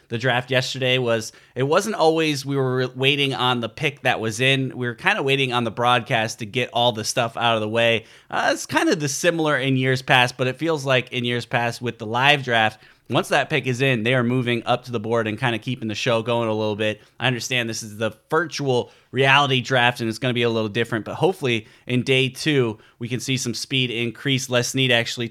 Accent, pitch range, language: American, 120-135 Hz, English